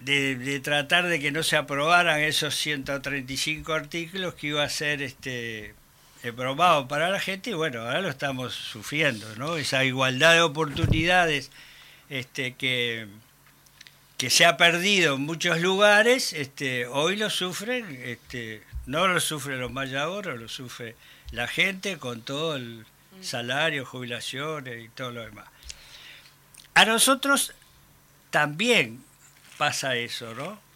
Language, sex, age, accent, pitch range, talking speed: Spanish, male, 60-79, Argentinian, 125-155 Hz, 135 wpm